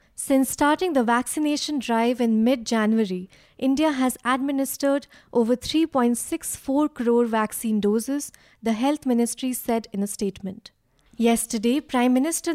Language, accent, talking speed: English, Indian, 120 wpm